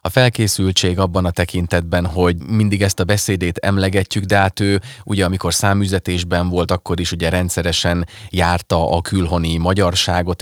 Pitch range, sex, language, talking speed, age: 85-110 Hz, male, Hungarian, 150 wpm, 30-49